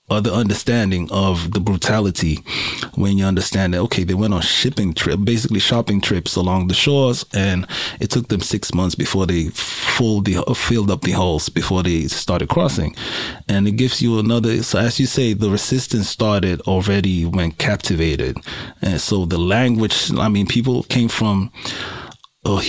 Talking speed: 170 wpm